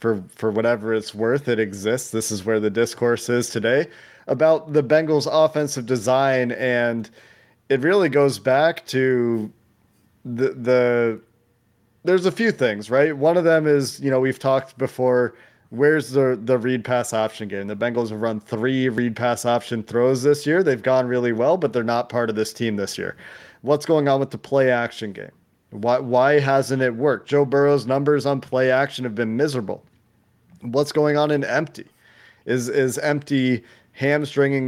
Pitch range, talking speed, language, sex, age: 120-140 Hz, 170 wpm, English, male, 30-49